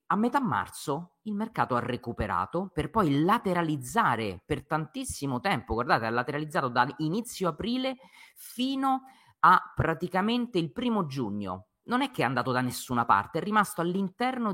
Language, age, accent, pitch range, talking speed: Italian, 30-49, native, 120-190 Hz, 150 wpm